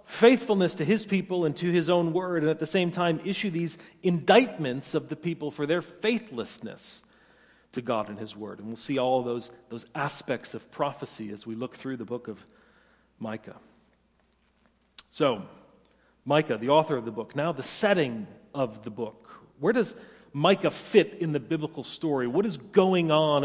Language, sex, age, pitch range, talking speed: English, male, 40-59, 130-175 Hz, 180 wpm